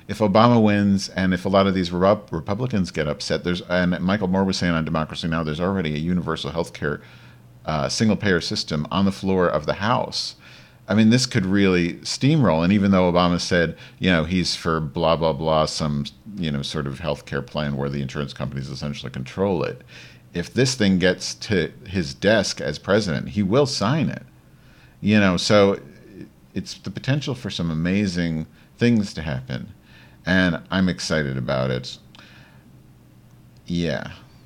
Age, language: 50-69, English